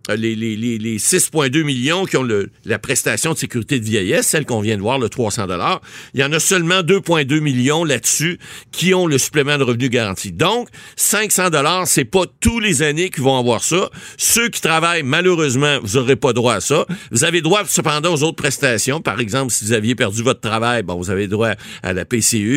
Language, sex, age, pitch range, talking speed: French, male, 50-69, 120-155 Hz, 210 wpm